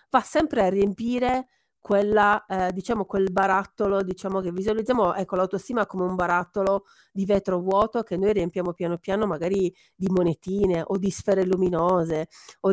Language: Italian